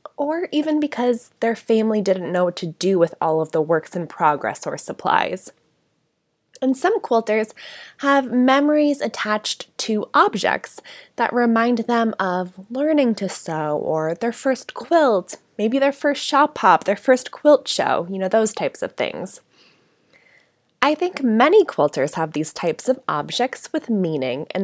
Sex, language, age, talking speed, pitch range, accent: female, English, 20-39, 160 wpm, 195-275 Hz, American